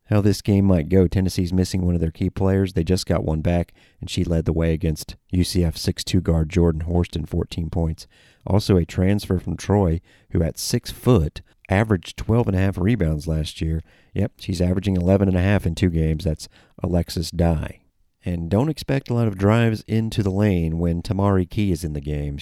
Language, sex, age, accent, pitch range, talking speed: English, male, 40-59, American, 80-100 Hz, 205 wpm